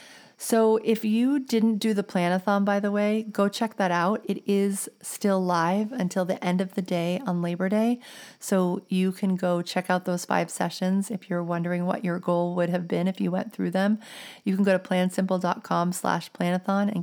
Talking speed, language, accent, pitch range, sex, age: 195 wpm, English, American, 175-205 Hz, female, 30-49